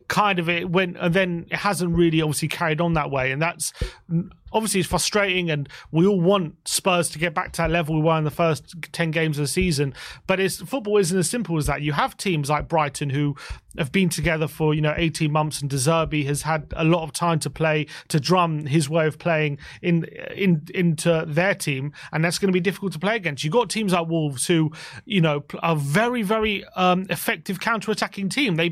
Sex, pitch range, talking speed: male, 155-185 Hz, 225 wpm